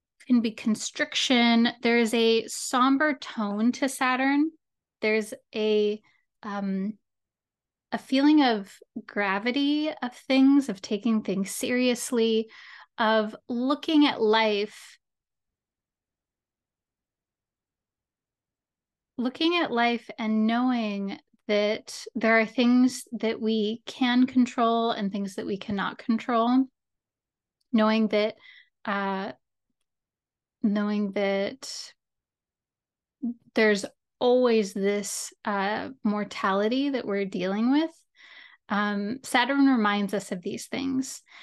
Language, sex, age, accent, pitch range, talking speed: English, female, 10-29, American, 210-255 Hz, 95 wpm